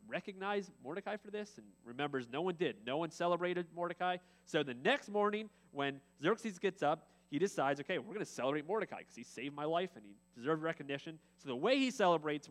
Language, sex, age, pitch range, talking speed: English, male, 30-49, 140-180 Hz, 205 wpm